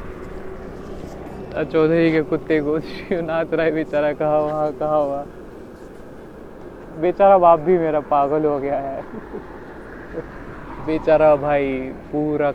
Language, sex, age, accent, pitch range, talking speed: Marathi, male, 20-39, native, 140-165 Hz, 110 wpm